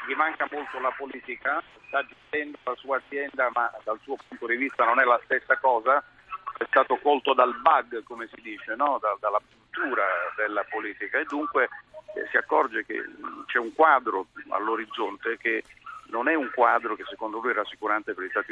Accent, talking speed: native, 190 wpm